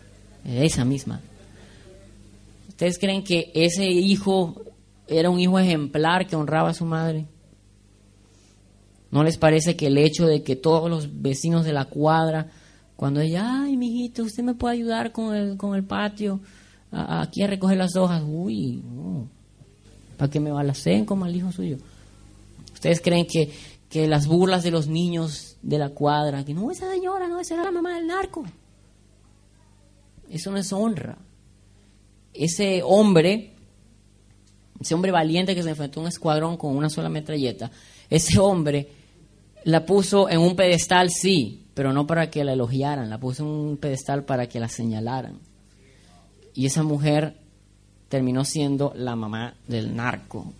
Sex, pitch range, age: female, 105-170 Hz, 30-49